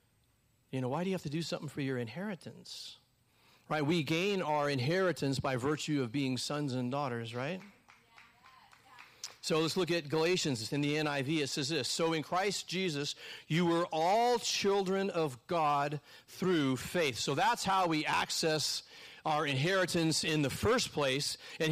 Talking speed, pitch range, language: 170 wpm, 140-175 Hz, English